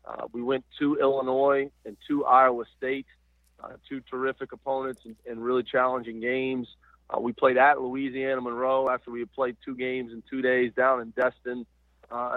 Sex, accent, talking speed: male, American, 180 wpm